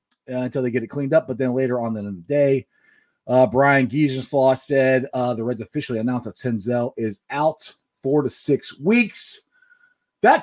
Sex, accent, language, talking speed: male, American, English, 185 wpm